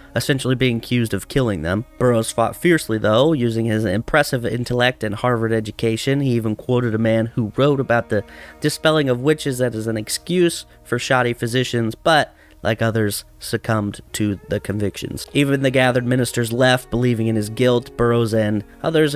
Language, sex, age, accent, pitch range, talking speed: English, male, 30-49, American, 105-125 Hz, 170 wpm